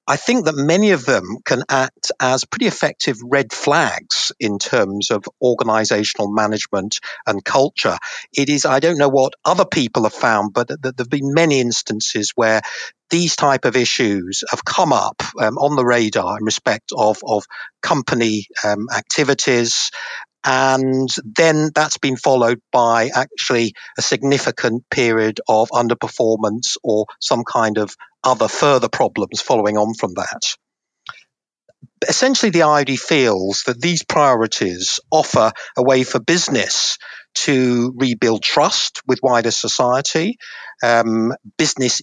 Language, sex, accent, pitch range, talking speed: English, male, British, 115-145 Hz, 140 wpm